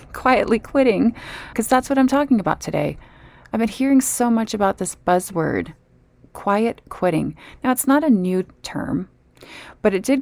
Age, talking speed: 30-49, 165 wpm